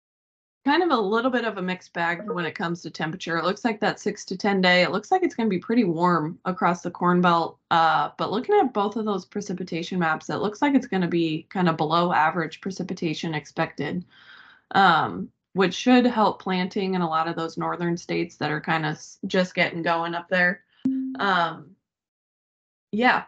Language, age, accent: English, 20-39, American